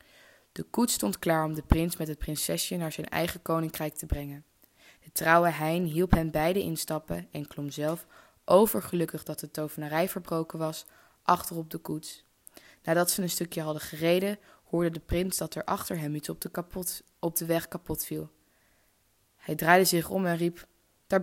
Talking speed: 180 wpm